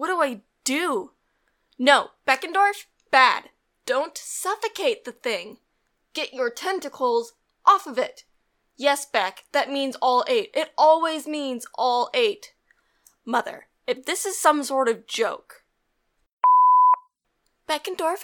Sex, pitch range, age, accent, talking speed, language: female, 230-315 Hz, 10-29, American, 120 wpm, English